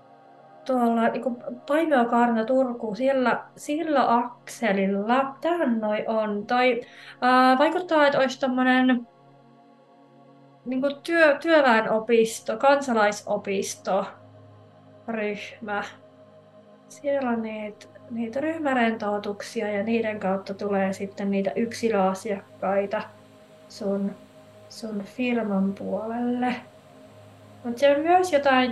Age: 30-49